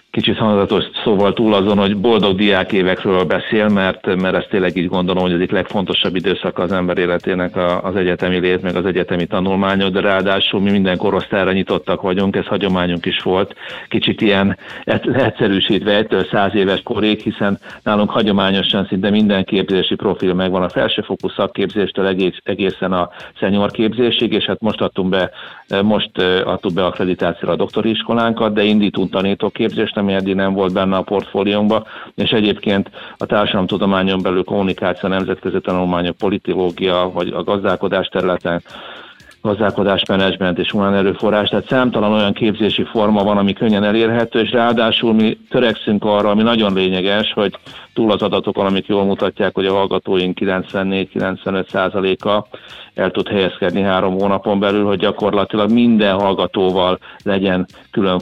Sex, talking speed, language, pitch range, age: male, 150 wpm, Hungarian, 95-105 Hz, 50-69